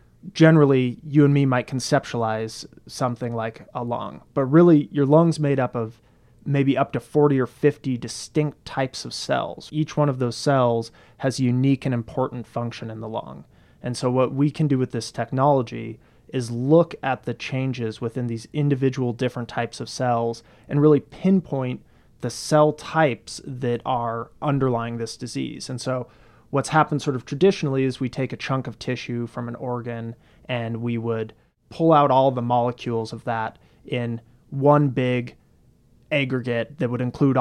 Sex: male